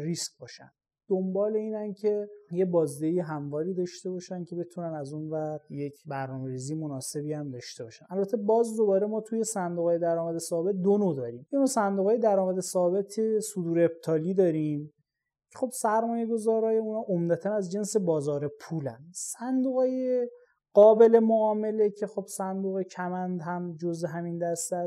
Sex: male